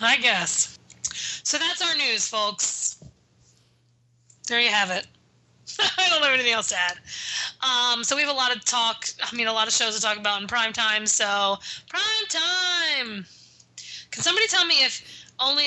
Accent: American